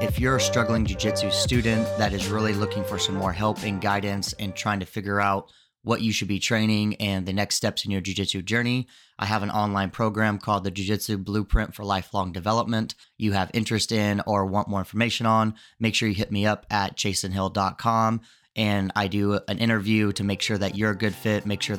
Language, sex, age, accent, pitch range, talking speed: English, male, 20-39, American, 100-110 Hz, 215 wpm